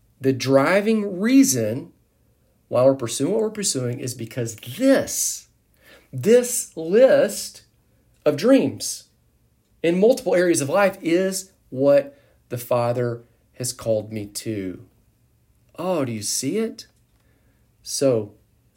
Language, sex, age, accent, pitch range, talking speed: English, male, 40-59, American, 115-160 Hz, 110 wpm